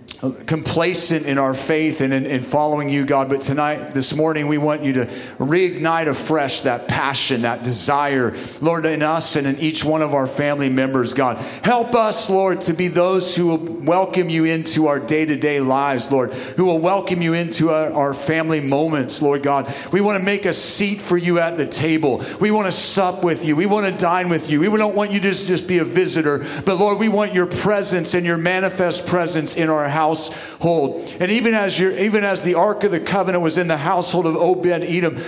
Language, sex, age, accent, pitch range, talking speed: English, male, 40-59, American, 155-200 Hz, 215 wpm